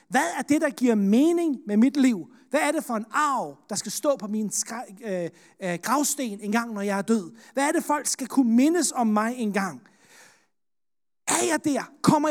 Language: Danish